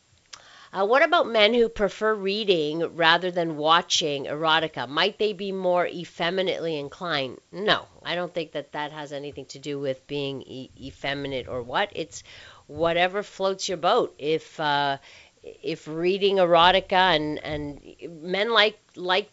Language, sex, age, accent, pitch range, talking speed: English, female, 40-59, American, 150-190 Hz, 150 wpm